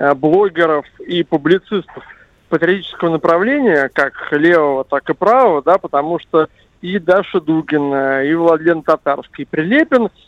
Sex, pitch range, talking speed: male, 150-190 Hz, 125 wpm